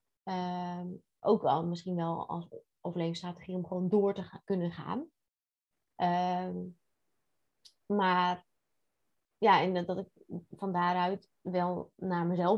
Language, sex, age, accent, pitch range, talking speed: Dutch, female, 20-39, Dutch, 180-225 Hz, 120 wpm